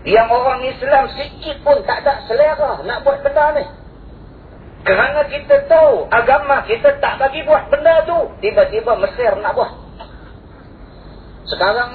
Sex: male